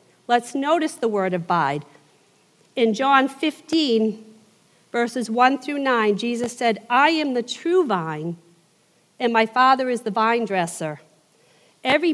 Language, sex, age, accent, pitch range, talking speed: English, female, 50-69, American, 195-250 Hz, 140 wpm